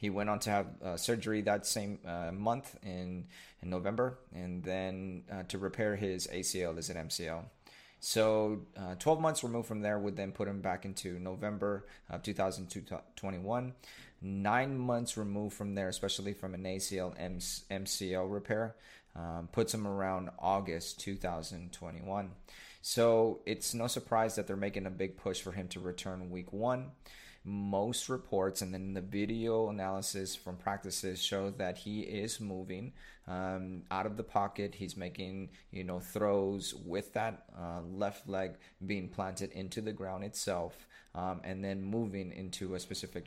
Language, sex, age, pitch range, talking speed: English, male, 30-49, 95-105 Hz, 160 wpm